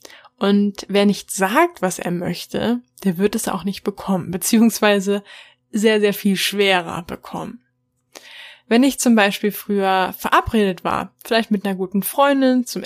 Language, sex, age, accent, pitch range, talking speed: German, female, 10-29, German, 190-220 Hz, 150 wpm